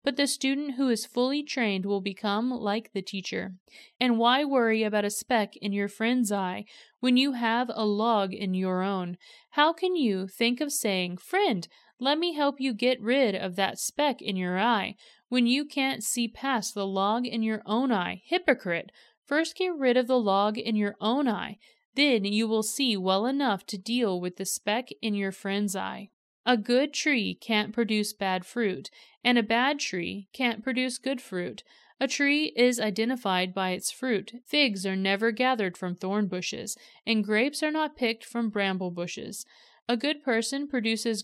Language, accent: English, American